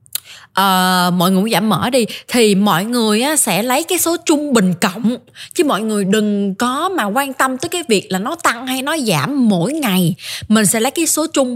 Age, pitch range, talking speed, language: 20-39, 190-270 Hz, 225 wpm, Vietnamese